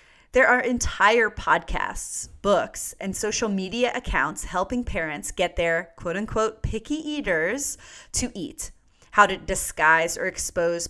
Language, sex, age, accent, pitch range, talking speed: English, female, 30-49, American, 175-245 Hz, 125 wpm